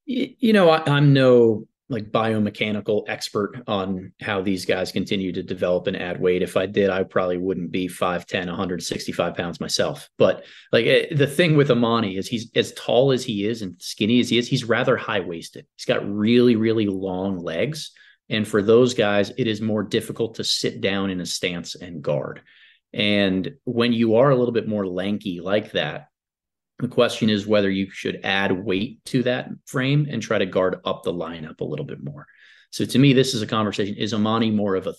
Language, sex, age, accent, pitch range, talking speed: English, male, 30-49, American, 95-125 Hz, 200 wpm